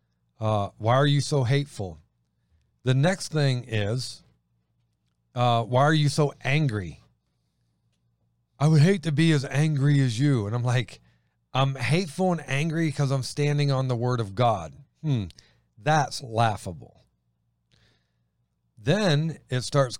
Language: English